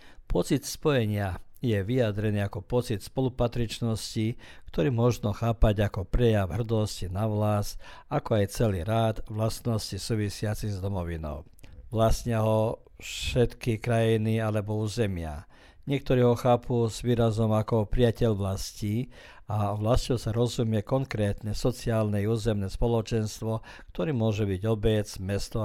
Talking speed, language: 120 wpm, Croatian